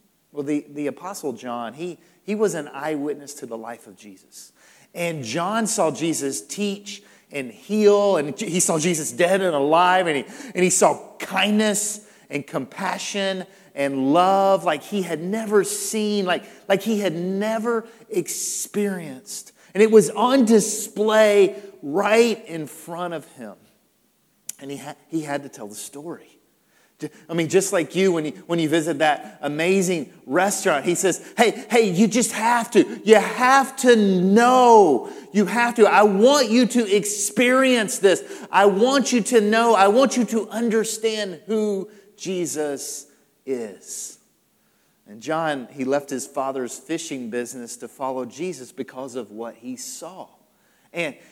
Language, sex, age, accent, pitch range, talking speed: English, male, 40-59, American, 155-215 Hz, 155 wpm